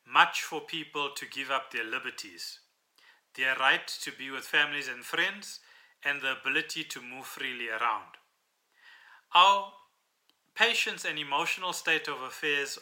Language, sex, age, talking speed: English, male, 30-49, 140 wpm